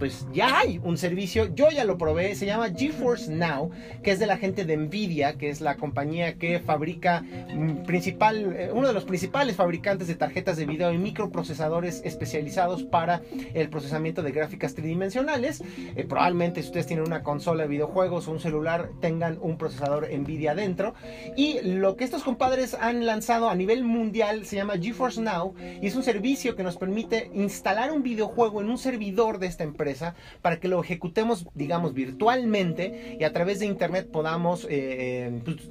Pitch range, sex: 160-220 Hz, male